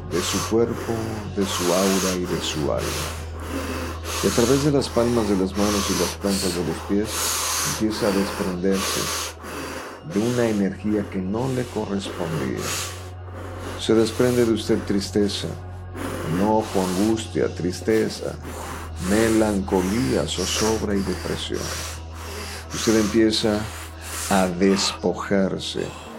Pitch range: 85-110 Hz